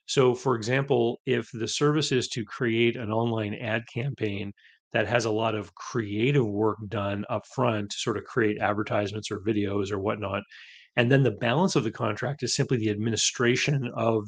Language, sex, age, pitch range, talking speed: English, male, 30-49, 105-130 Hz, 180 wpm